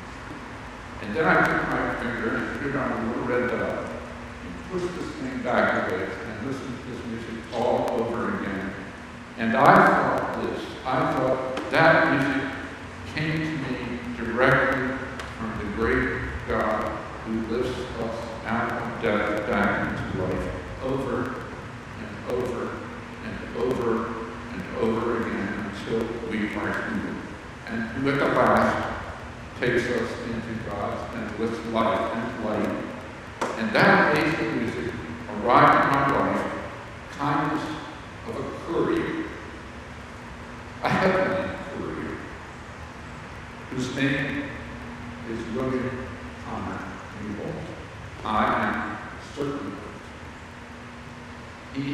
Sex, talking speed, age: male, 120 wpm, 60-79